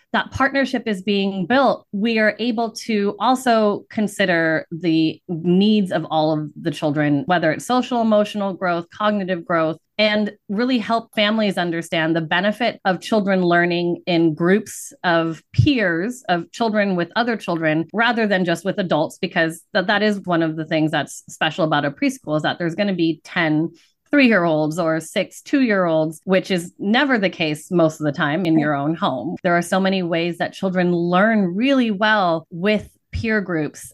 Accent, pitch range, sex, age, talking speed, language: American, 160-205 Hz, female, 30-49, 175 wpm, English